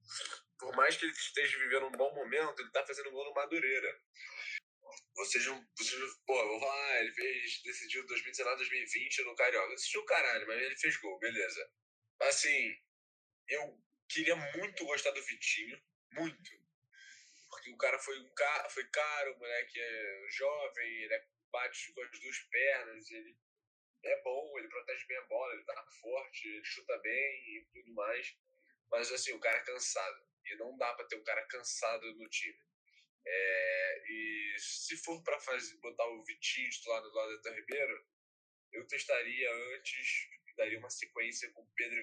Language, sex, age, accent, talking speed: Portuguese, male, 10-29, Brazilian, 165 wpm